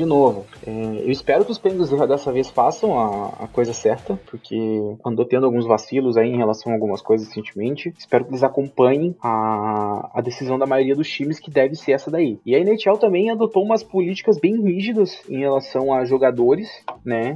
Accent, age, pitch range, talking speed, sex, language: Brazilian, 20-39, 125-200 Hz, 195 wpm, male, Portuguese